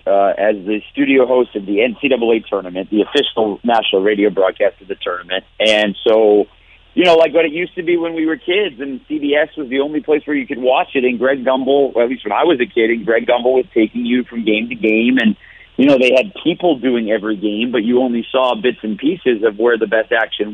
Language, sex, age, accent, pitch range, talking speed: English, male, 50-69, American, 110-145 Hz, 245 wpm